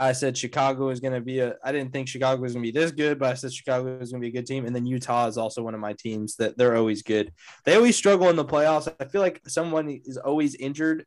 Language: English